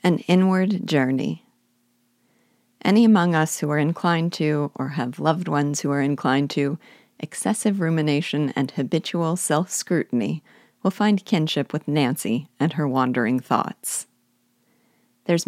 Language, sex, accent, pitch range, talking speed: English, female, American, 140-170 Hz, 130 wpm